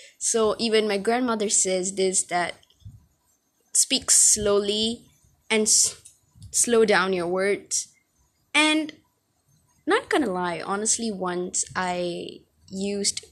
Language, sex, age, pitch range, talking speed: English, female, 20-39, 185-220 Hz, 100 wpm